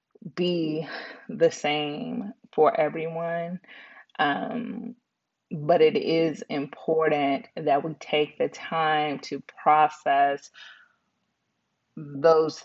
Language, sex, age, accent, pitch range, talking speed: English, female, 20-39, American, 145-165 Hz, 85 wpm